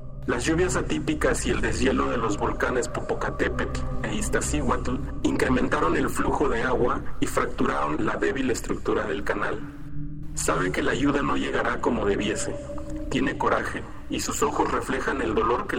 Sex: male